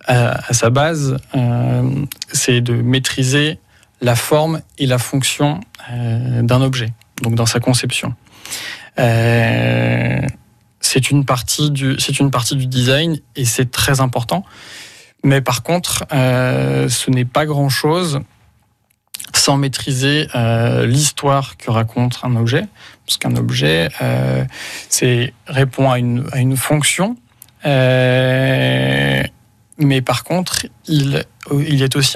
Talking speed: 130 wpm